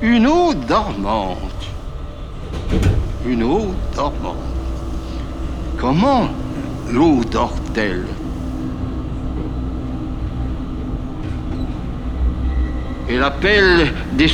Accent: French